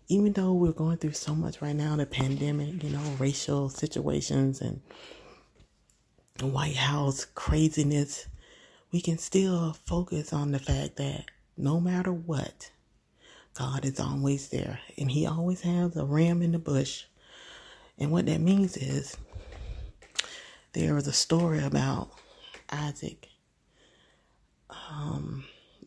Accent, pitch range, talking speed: American, 130-165 Hz, 130 wpm